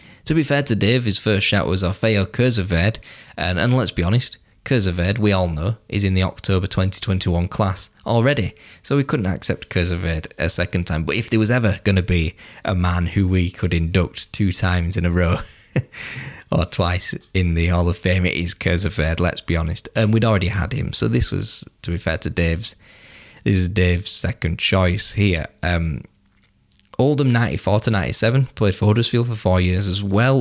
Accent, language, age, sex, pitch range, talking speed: British, English, 10-29, male, 85-105 Hz, 195 wpm